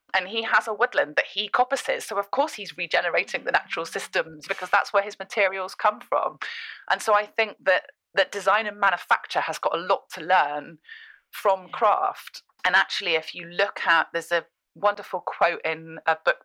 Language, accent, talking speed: English, British, 195 wpm